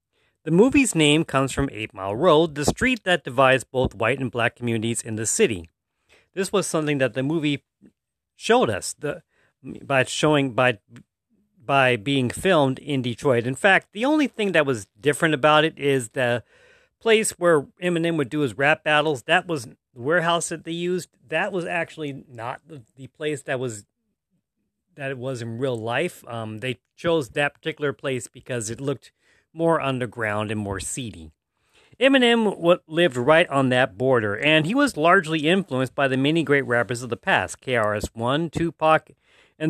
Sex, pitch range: male, 125-175 Hz